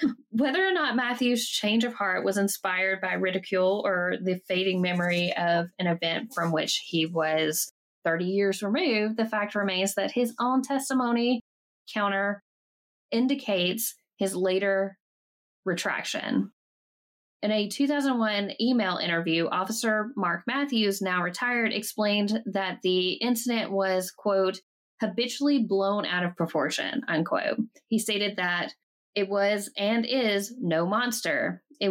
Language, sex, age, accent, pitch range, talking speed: English, female, 10-29, American, 185-230 Hz, 130 wpm